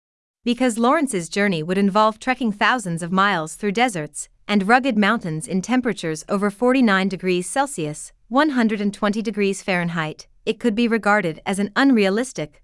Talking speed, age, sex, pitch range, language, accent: 140 wpm, 30-49, female, 175-235 Hz, English, American